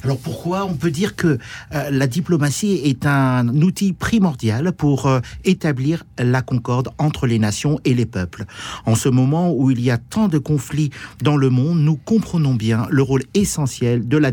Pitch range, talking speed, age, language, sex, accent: 125-170 Hz, 180 wpm, 50-69, French, male, French